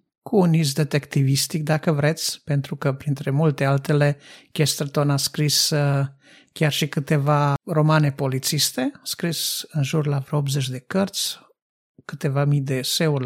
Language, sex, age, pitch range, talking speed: Romanian, male, 50-69, 140-160 Hz, 135 wpm